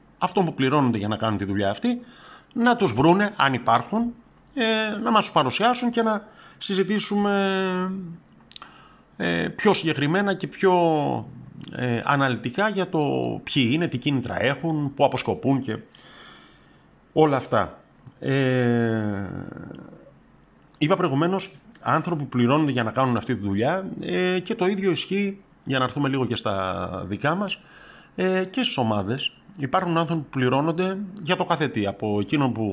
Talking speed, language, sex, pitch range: 135 wpm, Greek, male, 110-180 Hz